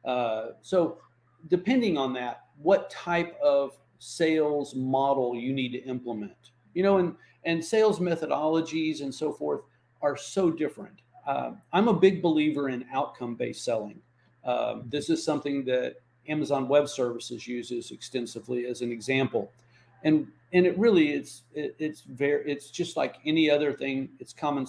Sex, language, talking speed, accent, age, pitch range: male, English, 150 wpm, American, 50-69, 125-165 Hz